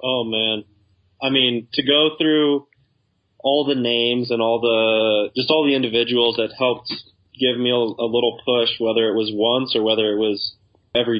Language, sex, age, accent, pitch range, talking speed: English, male, 20-39, American, 110-125 Hz, 175 wpm